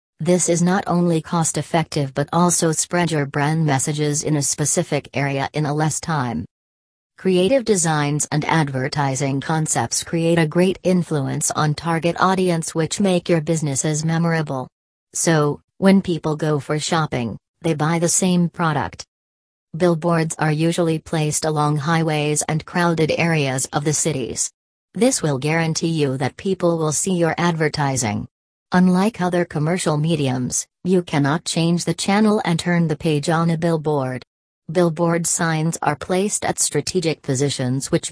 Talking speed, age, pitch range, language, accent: 145 wpm, 40-59, 145-175 Hz, English, American